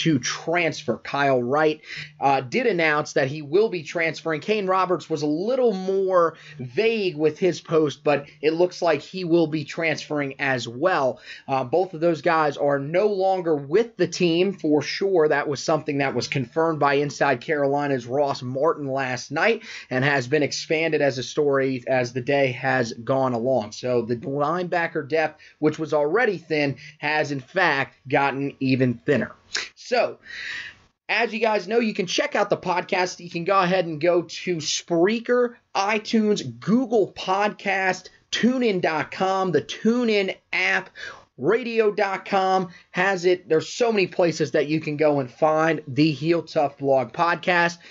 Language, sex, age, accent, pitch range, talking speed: English, male, 30-49, American, 145-185 Hz, 160 wpm